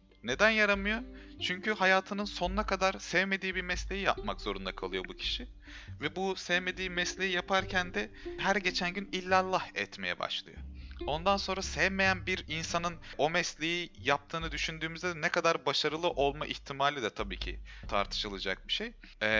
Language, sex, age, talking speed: Turkish, male, 30-49, 140 wpm